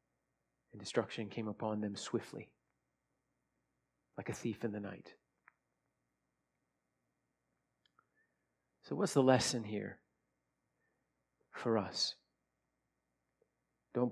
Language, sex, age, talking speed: English, male, 40-59, 85 wpm